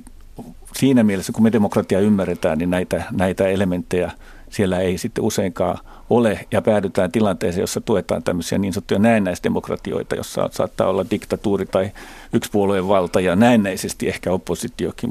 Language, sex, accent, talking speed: Finnish, male, native, 140 wpm